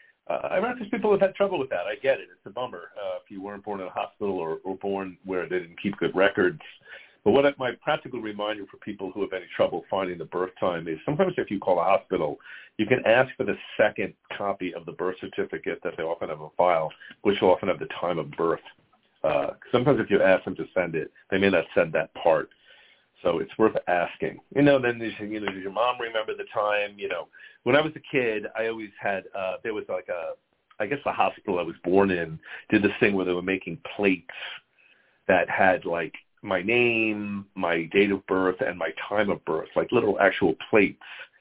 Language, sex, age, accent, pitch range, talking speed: English, male, 50-69, American, 95-125 Hz, 230 wpm